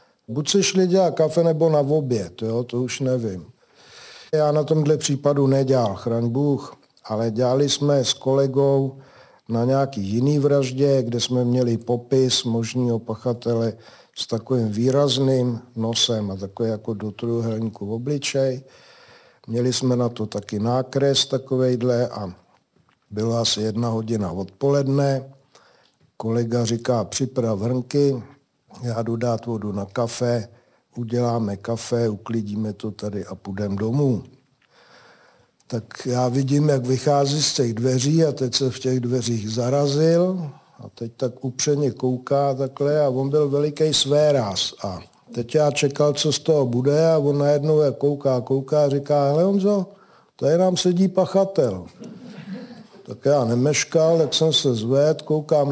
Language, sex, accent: Czech, male, native